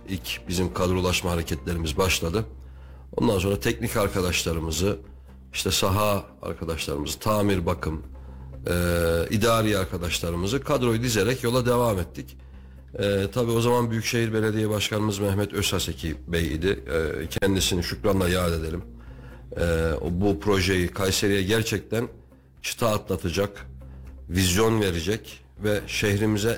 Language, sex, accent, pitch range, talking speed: Turkish, male, native, 80-105 Hz, 110 wpm